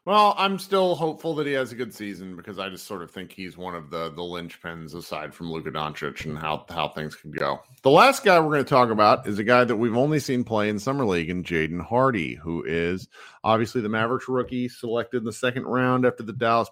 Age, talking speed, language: 40-59, 245 wpm, English